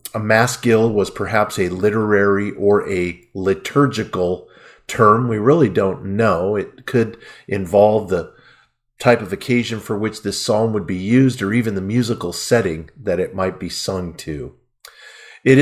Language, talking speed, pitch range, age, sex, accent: English, 160 wpm, 100-140 Hz, 50-69, male, American